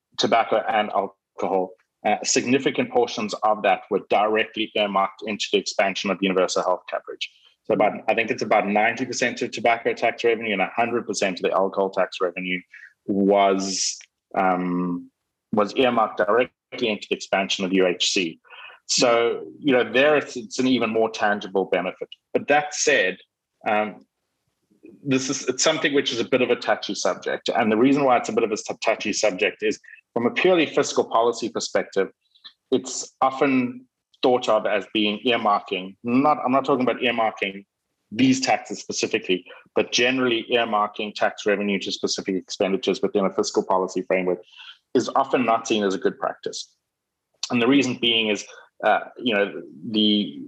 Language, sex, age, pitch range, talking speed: English, male, 30-49, 100-125 Hz, 165 wpm